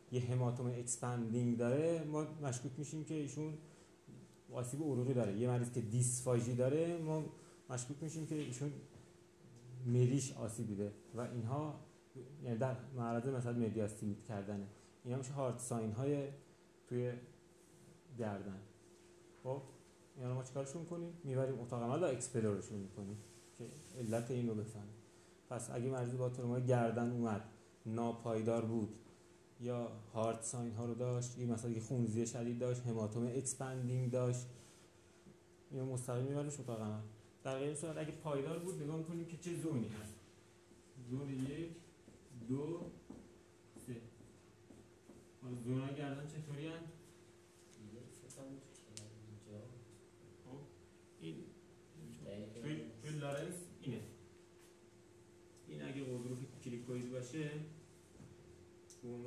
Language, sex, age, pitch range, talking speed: Persian, male, 30-49, 115-145 Hz, 95 wpm